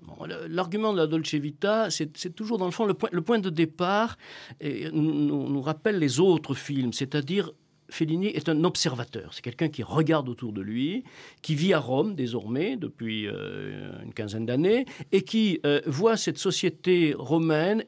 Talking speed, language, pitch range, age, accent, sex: 180 wpm, French, 135-185 Hz, 50-69, French, male